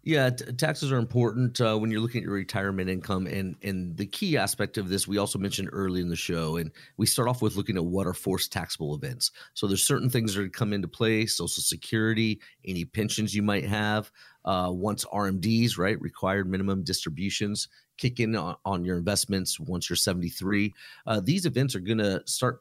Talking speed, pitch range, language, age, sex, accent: 205 wpm, 95-115 Hz, English, 40-59, male, American